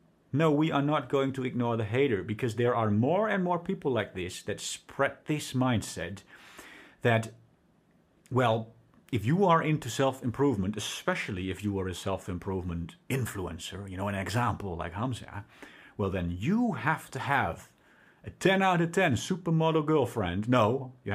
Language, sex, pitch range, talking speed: English, male, 100-140 Hz, 160 wpm